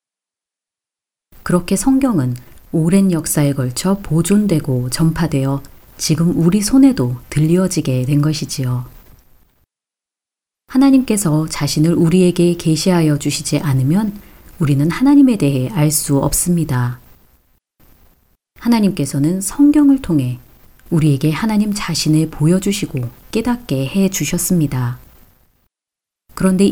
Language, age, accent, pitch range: Korean, 40-59, native, 140-200 Hz